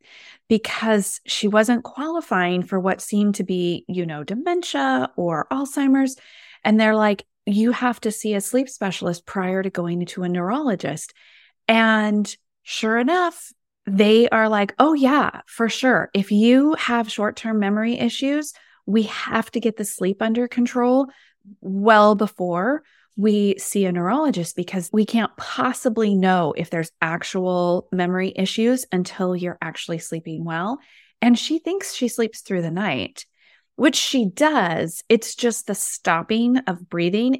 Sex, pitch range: female, 185-245 Hz